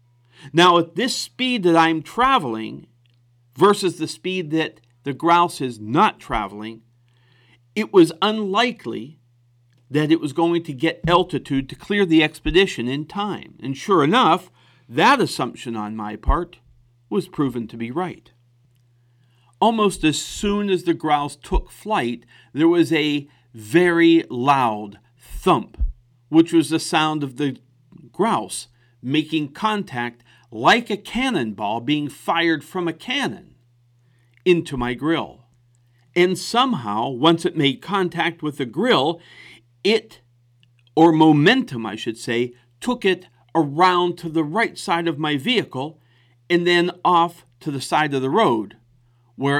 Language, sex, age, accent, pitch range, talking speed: English, male, 50-69, American, 120-175 Hz, 140 wpm